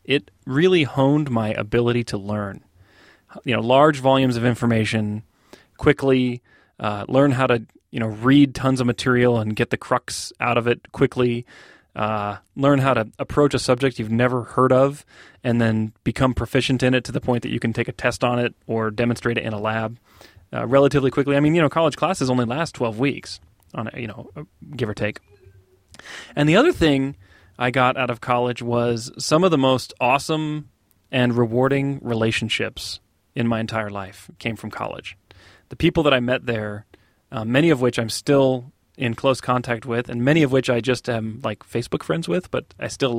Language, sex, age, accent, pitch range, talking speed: English, male, 30-49, American, 115-135 Hz, 195 wpm